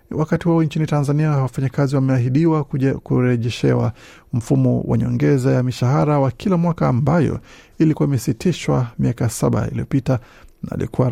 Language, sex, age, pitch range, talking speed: Swahili, male, 50-69, 120-145 Hz, 120 wpm